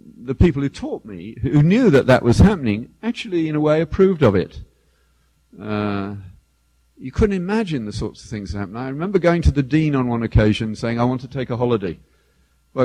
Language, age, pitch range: English, 50-69, 95-140 Hz